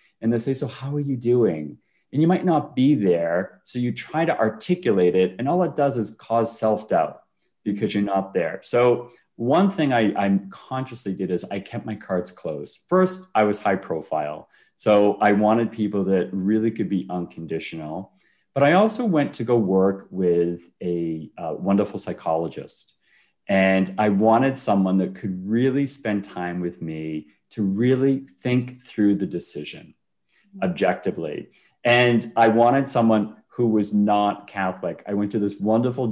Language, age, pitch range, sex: English, 30-49, 95-125 Hz, male